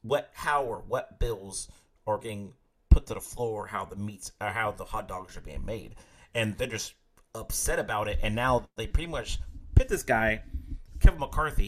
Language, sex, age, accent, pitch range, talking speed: English, male, 30-49, American, 100-140 Hz, 195 wpm